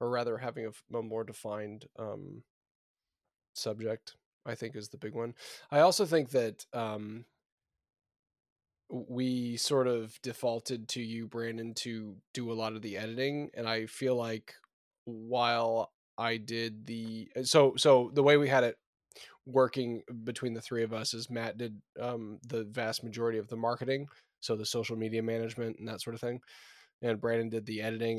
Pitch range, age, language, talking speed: 110-125 Hz, 10-29, English, 170 wpm